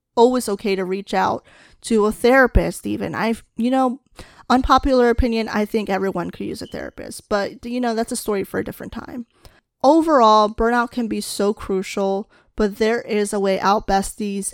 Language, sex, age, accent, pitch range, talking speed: English, female, 10-29, American, 195-230 Hz, 180 wpm